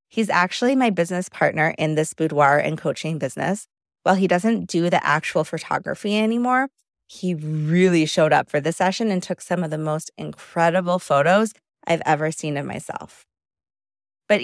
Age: 30-49